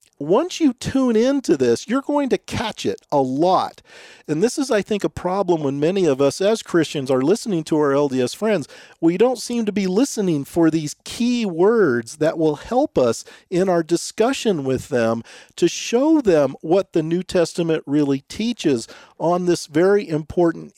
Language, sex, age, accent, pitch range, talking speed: English, male, 40-59, American, 140-200 Hz, 180 wpm